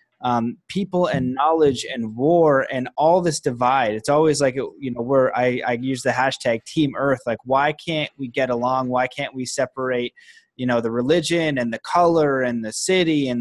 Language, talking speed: English, 195 wpm